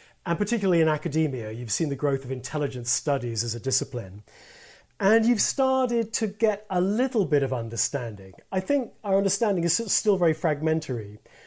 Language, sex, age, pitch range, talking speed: English, male, 40-59, 140-175 Hz, 165 wpm